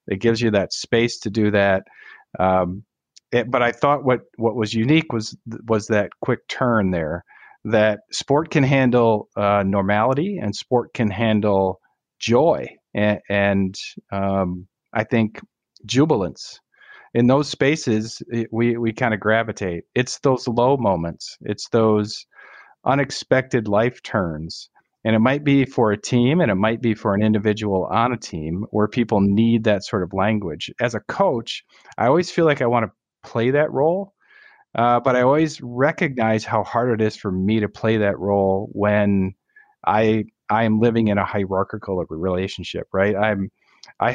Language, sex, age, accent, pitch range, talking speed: English, male, 40-59, American, 100-120 Hz, 165 wpm